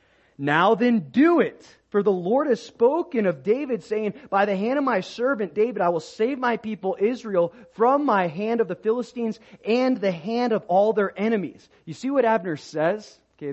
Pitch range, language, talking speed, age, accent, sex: 175-260 Hz, English, 195 wpm, 30-49, American, male